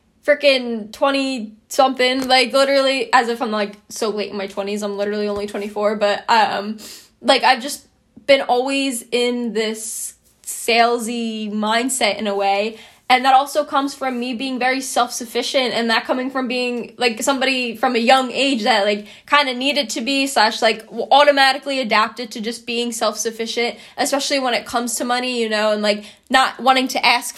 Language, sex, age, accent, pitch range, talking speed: English, female, 10-29, American, 225-265 Hz, 175 wpm